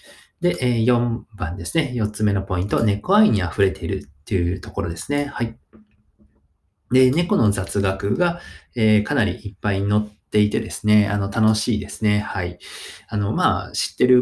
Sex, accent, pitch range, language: male, native, 95-120 Hz, Japanese